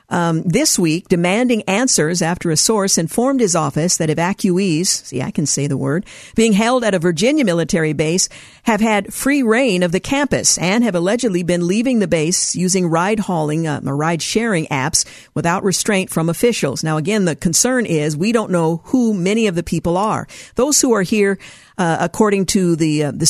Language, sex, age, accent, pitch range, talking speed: English, female, 50-69, American, 165-205 Hz, 185 wpm